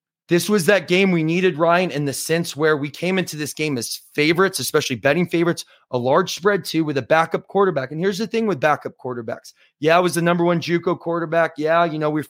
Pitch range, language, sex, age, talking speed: 140-170 Hz, English, male, 20-39, 235 wpm